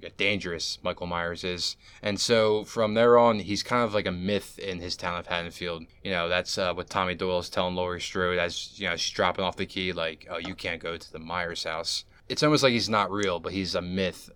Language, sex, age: English, male, 20-39